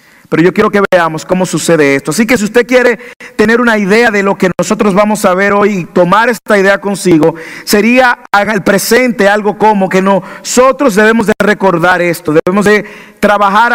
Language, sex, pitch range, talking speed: English, male, 170-225 Hz, 190 wpm